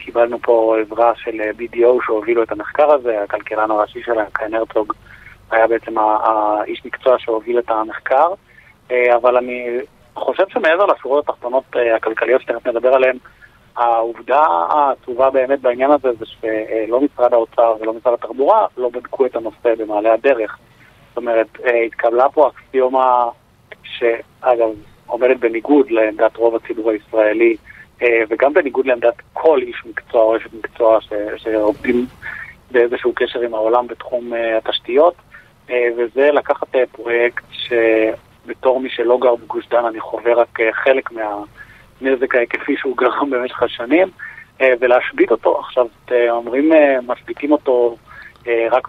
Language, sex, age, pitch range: Hebrew, male, 30-49, 115-130 Hz